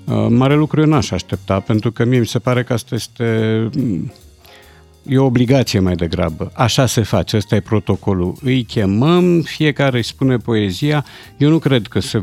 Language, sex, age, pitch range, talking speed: Romanian, male, 50-69, 100-125 Hz, 175 wpm